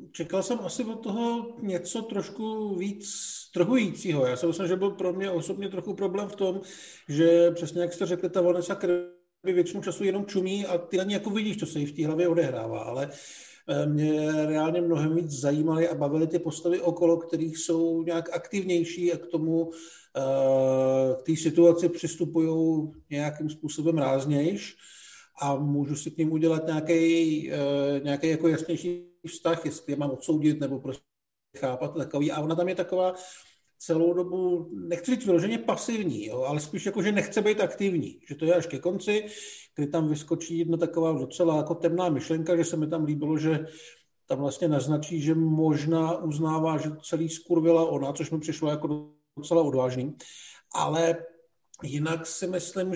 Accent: native